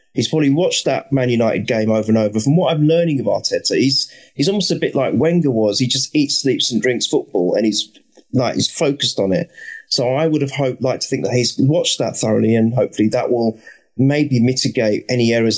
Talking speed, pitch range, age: 225 wpm, 120-155 Hz, 30-49